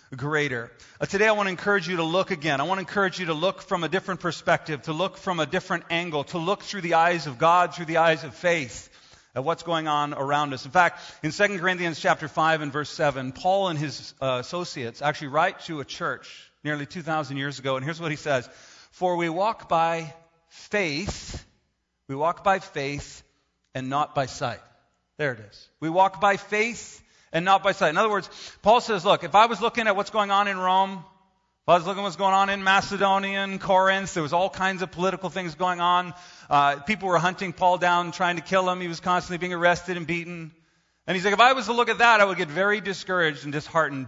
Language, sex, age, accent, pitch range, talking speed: English, male, 40-59, American, 150-190 Hz, 230 wpm